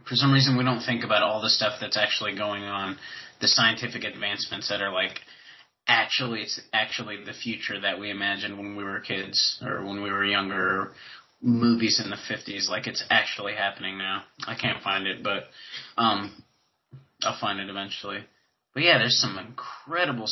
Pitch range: 100-120 Hz